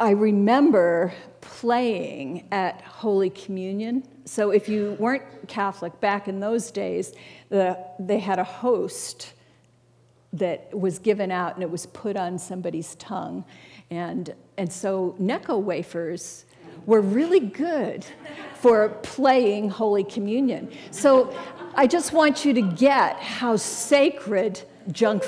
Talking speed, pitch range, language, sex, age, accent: 125 wpm, 190-255 Hz, English, female, 50-69, American